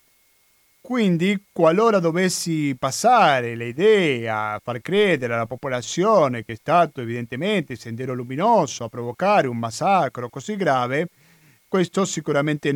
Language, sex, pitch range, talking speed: Italian, male, 125-170 Hz, 120 wpm